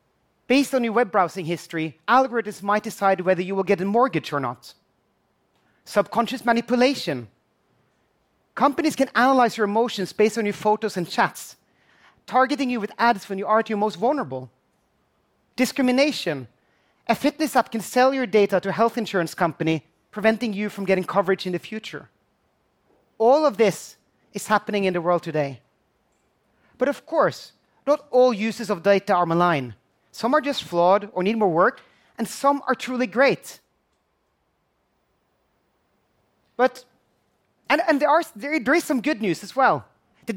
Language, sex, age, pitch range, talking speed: English, male, 30-49, 185-255 Hz, 160 wpm